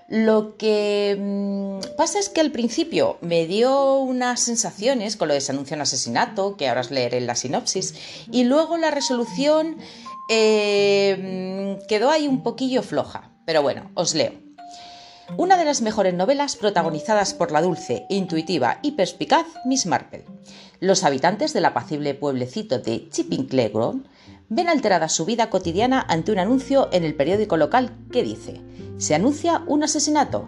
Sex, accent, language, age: female, Spanish, Spanish, 40-59